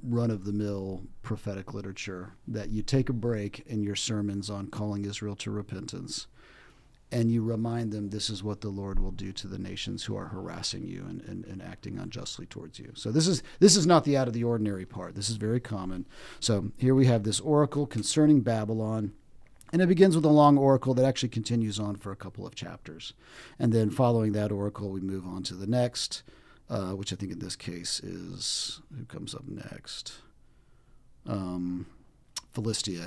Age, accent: 40-59, American